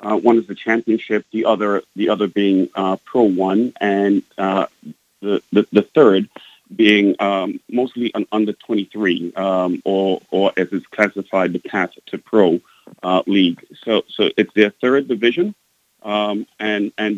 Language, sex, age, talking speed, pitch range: English, male, 40-59, 170 wpm, 95-110 Hz